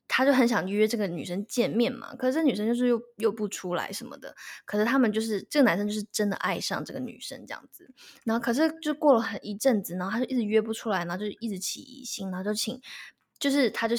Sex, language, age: female, Chinese, 10-29